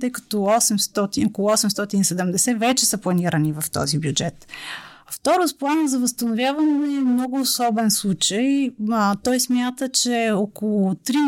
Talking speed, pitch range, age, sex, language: 130 wpm, 195-245 Hz, 30-49, female, Bulgarian